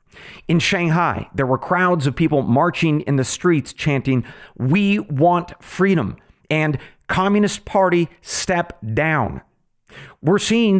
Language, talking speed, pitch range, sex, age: English, 120 wpm, 120-175 Hz, male, 40-59